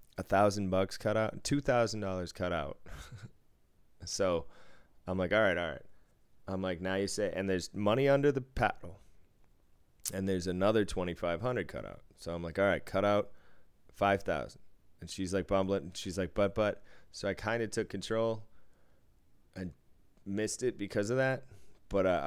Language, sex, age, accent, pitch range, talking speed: English, male, 20-39, American, 85-105 Hz, 170 wpm